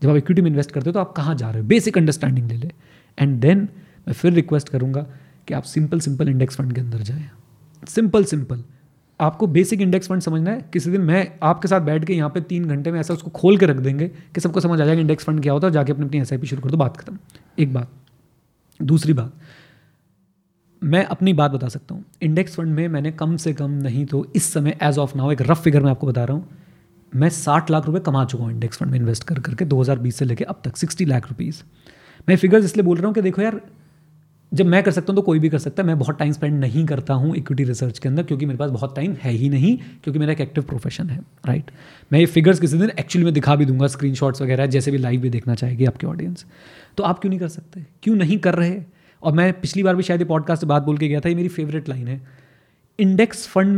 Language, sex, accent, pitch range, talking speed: Hindi, male, native, 140-175 Hz, 255 wpm